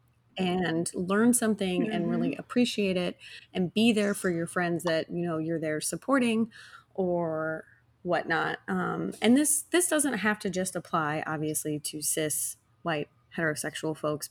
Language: English